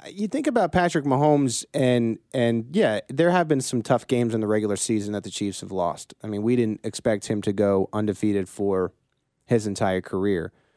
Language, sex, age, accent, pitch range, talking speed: English, male, 30-49, American, 100-125 Hz, 200 wpm